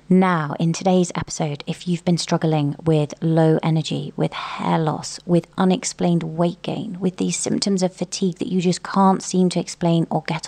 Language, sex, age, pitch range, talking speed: English, female, 30-49, 160-180 Hz, 185 wpm